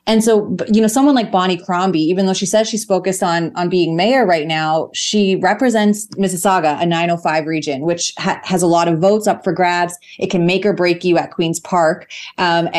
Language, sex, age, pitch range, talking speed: English, female, 30-49, 170-200 Hz, 220 wpm